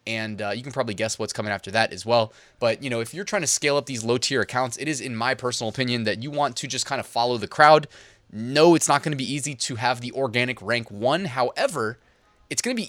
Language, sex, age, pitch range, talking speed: English, male, 20-39, 115-150 Hz, 275 wpm